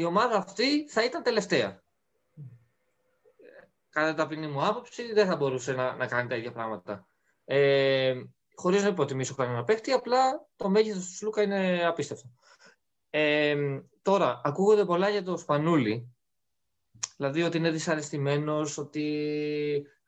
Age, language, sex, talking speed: 20-39, Greek, male, 130 wpm